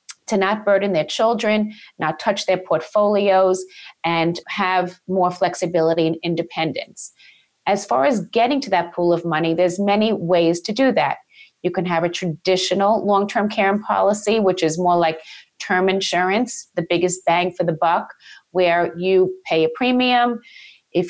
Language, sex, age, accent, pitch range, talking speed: English, female, 30-49, American, 170-200 Hz, 160 wpm